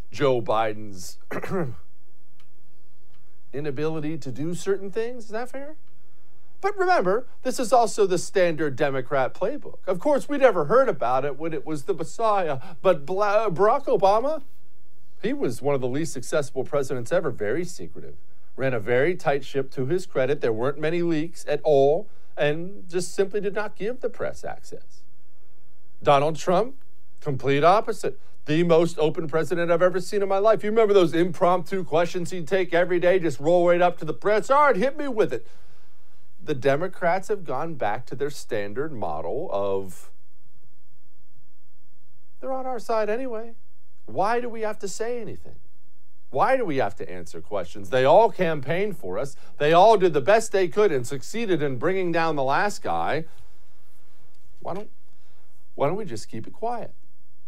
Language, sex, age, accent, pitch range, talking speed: English, male, 40-59, American, 140-210 Hz, 170 wpm